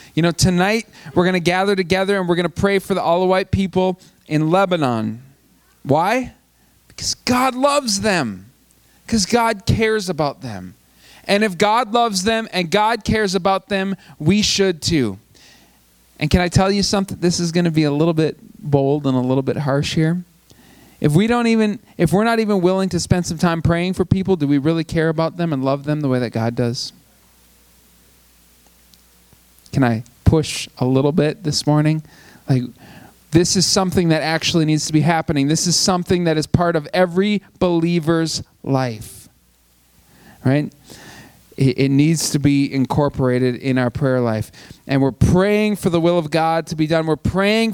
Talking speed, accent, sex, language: 180 wpm, American, male, English